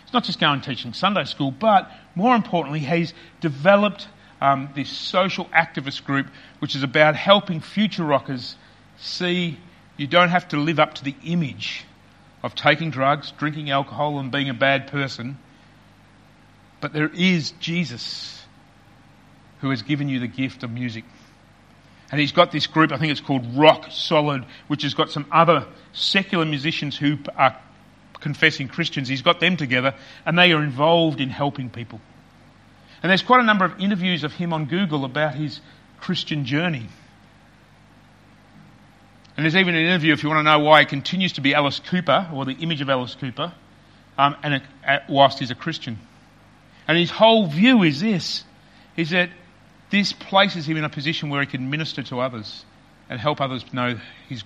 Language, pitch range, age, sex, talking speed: English, 135-170 Hz, 40-59, male, 170 wpm